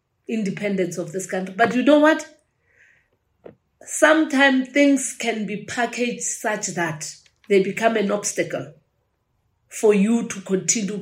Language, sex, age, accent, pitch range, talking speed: English, female, 40-59, South African, 195-260 Hz, 125 wpm